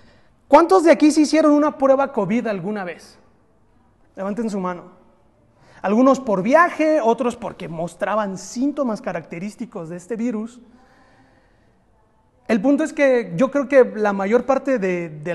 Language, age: Spanish, 30-49